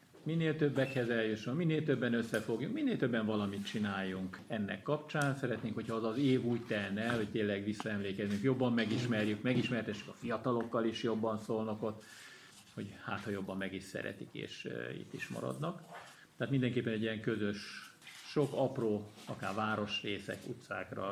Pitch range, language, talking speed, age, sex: 105-125 Hz, Hungarian, 150 wpm, 50-69, male